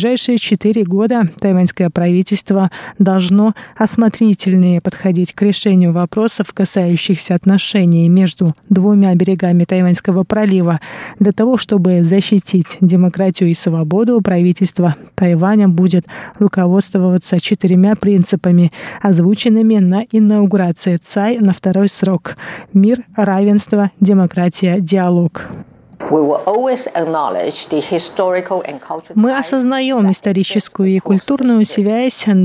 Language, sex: Russian, female